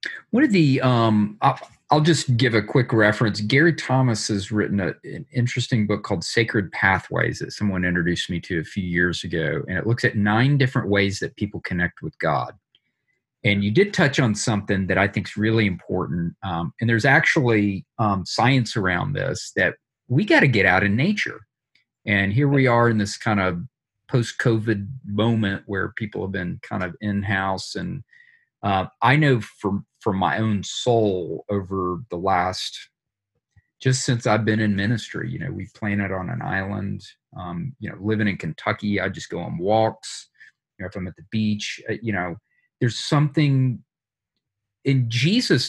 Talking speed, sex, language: 180 wpm, male, English